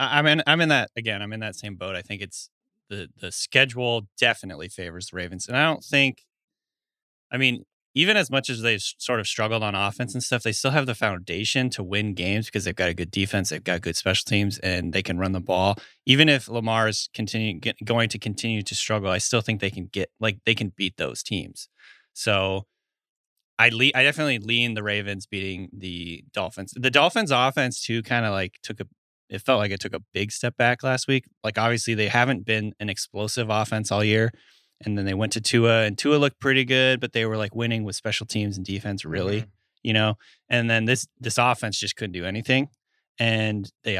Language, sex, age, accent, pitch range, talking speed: English, male, 30-49, American, 100-125 Hz, 220 wpm